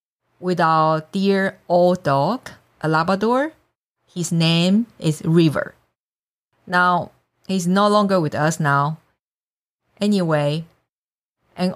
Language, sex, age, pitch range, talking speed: English, female, 50-69, 160-215 Hz, 100 wpm